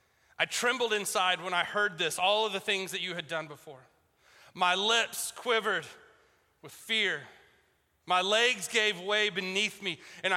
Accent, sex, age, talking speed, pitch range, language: American, male, 30-49, 160 wpm, 185-230 Hz, English